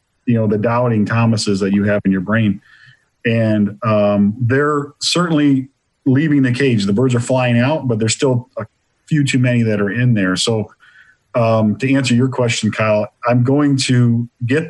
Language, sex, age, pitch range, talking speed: English, male, 40-59, 110-130 Hz, 185 wpm